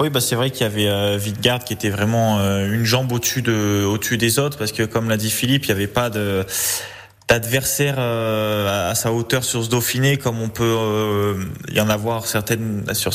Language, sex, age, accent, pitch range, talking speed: French, male, 20-39, French, 105-120 Hz, 225 wpm